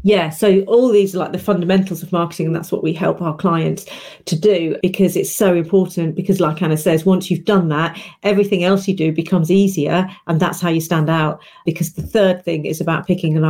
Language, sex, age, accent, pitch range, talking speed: English, female, 40-59, British, 165-195 Hz, 225 wpm